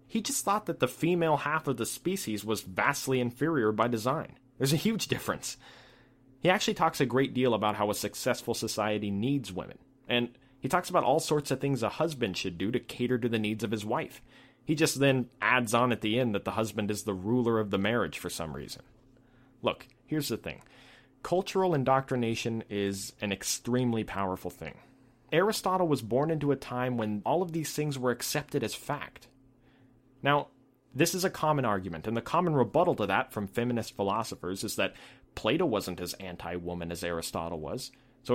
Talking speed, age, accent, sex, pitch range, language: 190 wpm, 30-49, American, male, 110-135 Hz, English